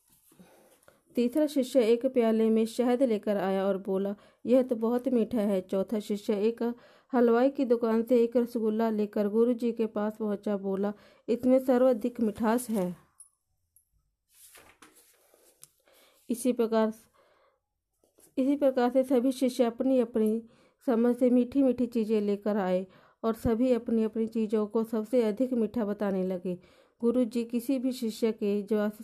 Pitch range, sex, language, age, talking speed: 210-245 Hz, female, Hindi, 40-59, 140 wpm